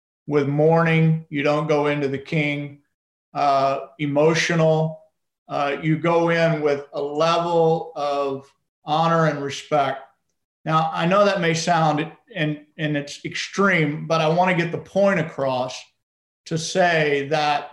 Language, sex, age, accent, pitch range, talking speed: English, male, 50-69, American, 150-180 Hz, 135 wpm